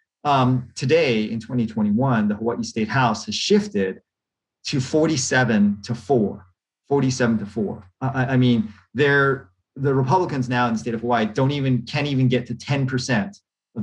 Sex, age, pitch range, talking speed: male, 30-49, 110-140 Hz, 160 wpm